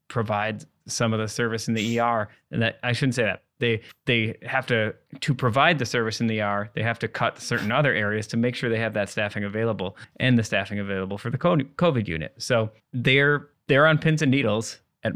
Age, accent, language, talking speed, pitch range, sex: 20-39, American, English, 220 wpm, 105-120 Hz, male